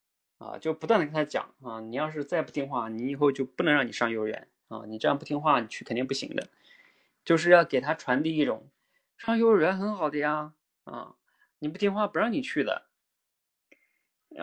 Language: Chinese